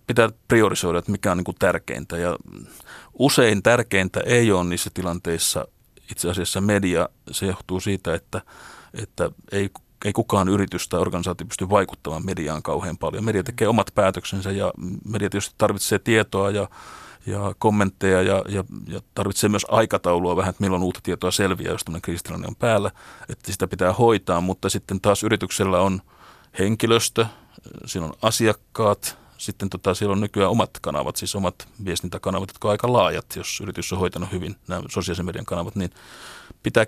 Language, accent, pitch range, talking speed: Finnish, native, 90-105 Hz, 155 wpm